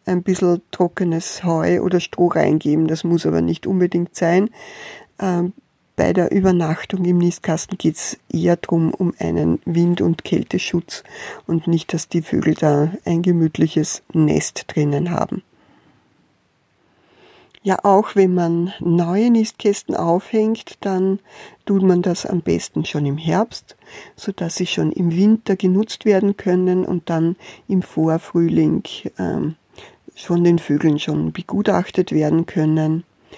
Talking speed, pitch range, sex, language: 135 wpm, 160-195 Hz, female, German